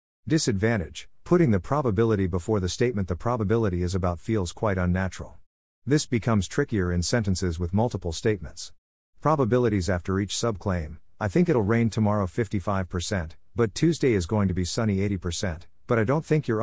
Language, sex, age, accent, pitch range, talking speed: English, male, 50-69, American, 90-115 Hz, 160 wpm